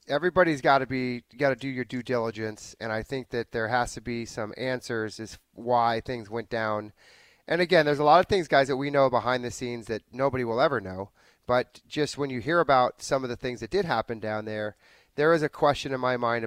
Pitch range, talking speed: 115-145 Hz, 240 wpm